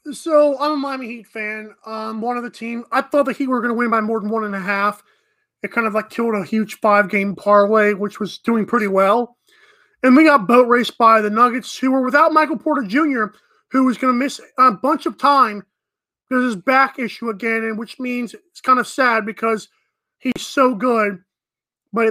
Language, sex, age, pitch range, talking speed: English, male, 20-39, 230-305 Hz, 215 wpm